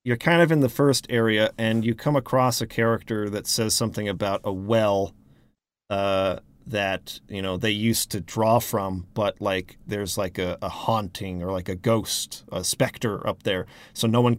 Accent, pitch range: American, 105-125 Hz